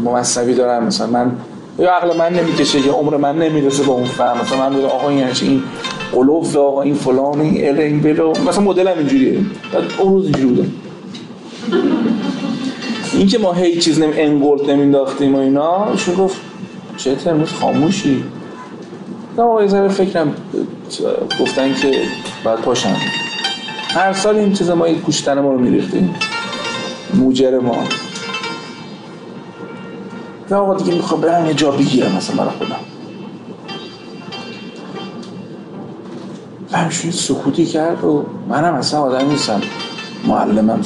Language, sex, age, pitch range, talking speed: Persian, male, 40-59, 135-195 Hz, 125 wpm